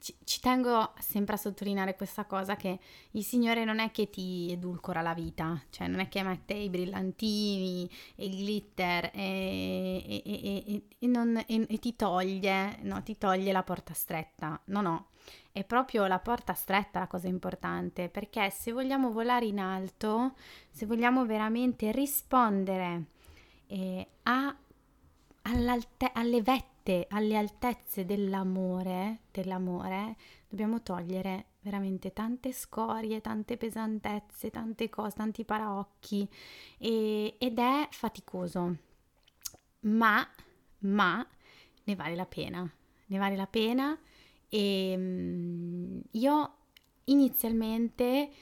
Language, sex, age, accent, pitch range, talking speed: Italian, female, 20-39, native, 185-230 Hz, 110 wpm